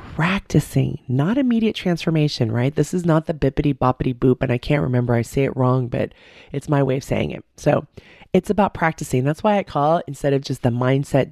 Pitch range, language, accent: 135-175 Hz, English, American